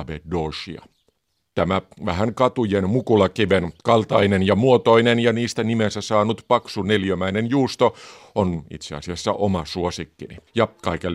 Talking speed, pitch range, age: 115 wpm, 85-115 Hz, 50-69